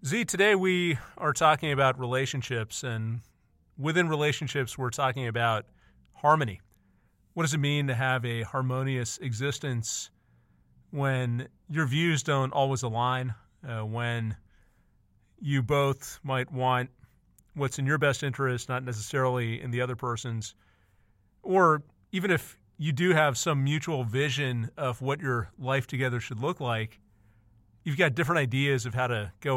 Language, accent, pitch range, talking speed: English, American, 115-145 Hz, 145 wpm